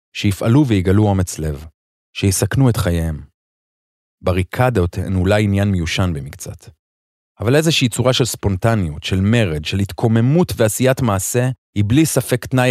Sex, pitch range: male, 90-115 Hz